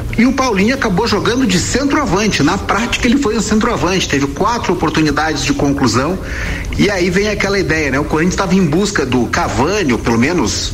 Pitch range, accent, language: 140-200 Hz, Brazilian, Portuguese